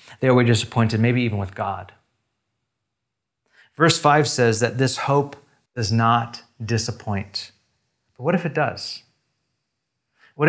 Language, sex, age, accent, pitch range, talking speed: English, male, 30-49, American, 110-130 Hz, 125 wpm